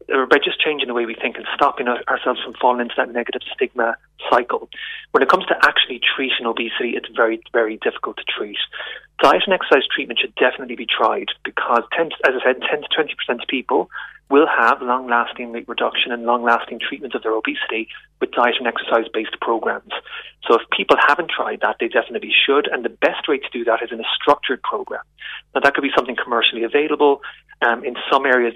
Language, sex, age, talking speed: English, male, 30-49, 200 wpm